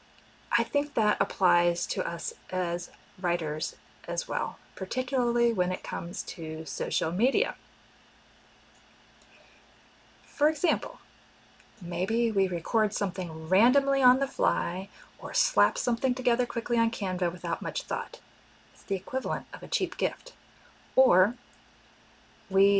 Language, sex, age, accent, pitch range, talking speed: English, female, 30-49, American, 175-240 Hz, 120 wpm